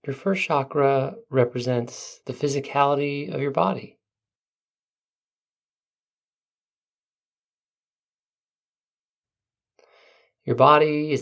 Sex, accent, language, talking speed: male, American, English, 65 wpm